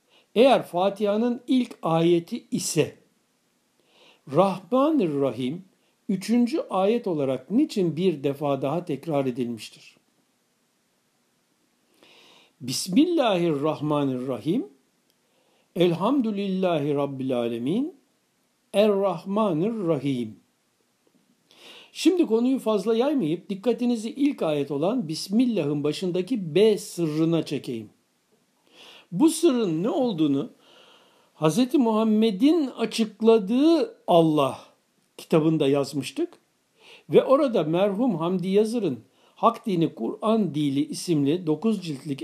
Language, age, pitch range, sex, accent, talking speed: Turkish, 60-79, 155-235 Hz, male, native, 80 wpm